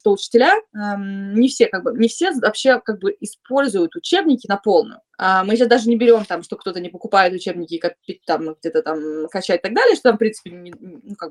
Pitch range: 180-255 Hz